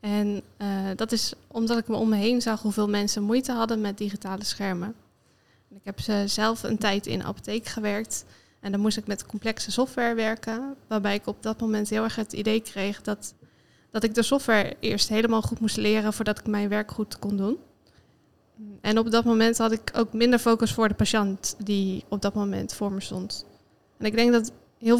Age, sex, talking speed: 20-39, female, 205 wpm